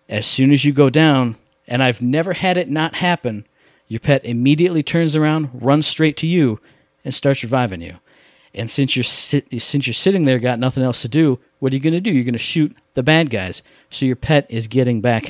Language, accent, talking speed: English, American, 220 wpm